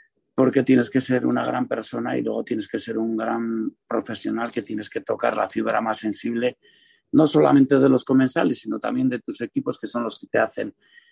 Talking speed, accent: 210 wpm, Spanish